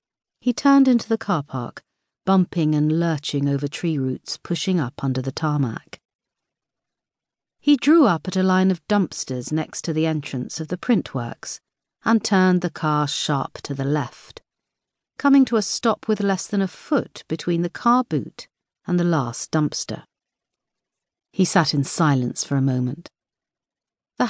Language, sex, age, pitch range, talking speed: English, female, 50-69, 140-205 Hz, 160 wpm